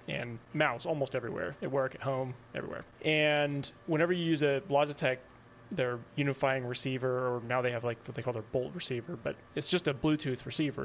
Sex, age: male, 20-39